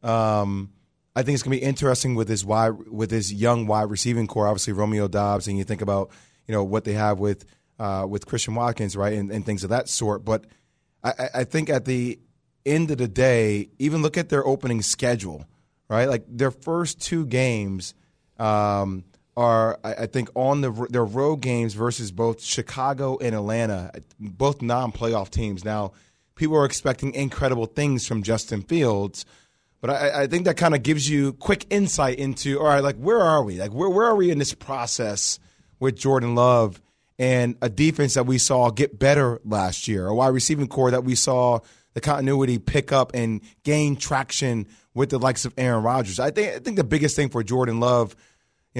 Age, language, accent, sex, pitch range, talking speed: 20-39, English, American, male, 110-140 Hz, 195 wpm